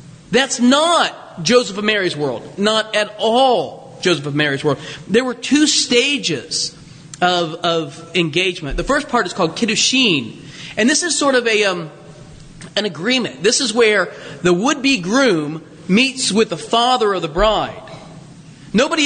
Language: English